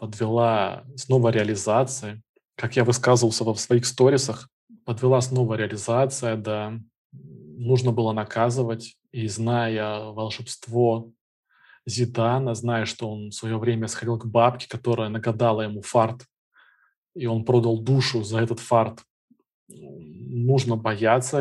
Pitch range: 110-125 Hz